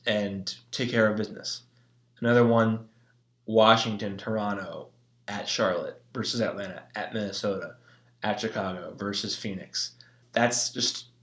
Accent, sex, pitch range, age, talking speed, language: American, male, 100-120 Hz, 20-39, 110 wpm, English